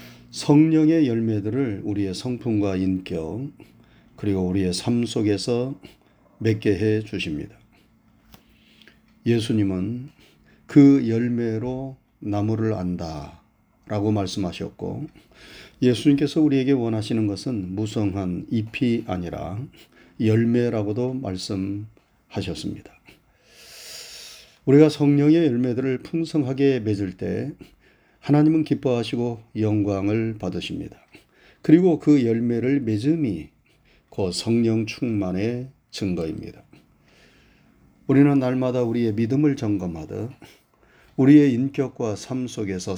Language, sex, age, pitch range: Korean, male, 40-59, 105-135 Hz